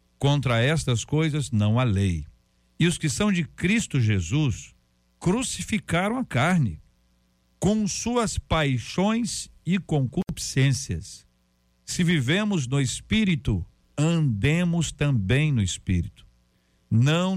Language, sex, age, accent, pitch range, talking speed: Portuguese, male, 60-79, Brazilian, 110-150 Hz, 105 wpm